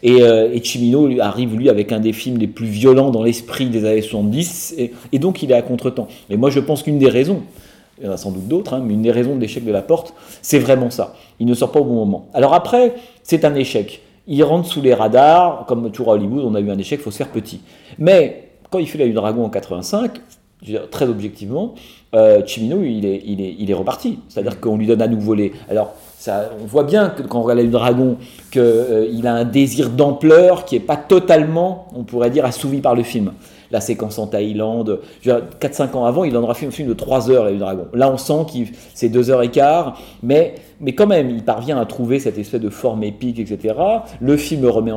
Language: French